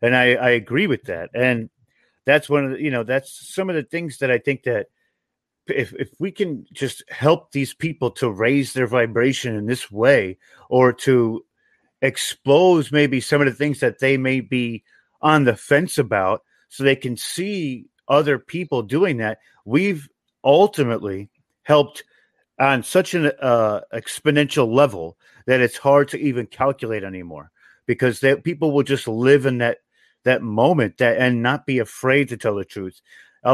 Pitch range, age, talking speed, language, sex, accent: 120-145 Hz, 40-59, 175 wpm, English, male, American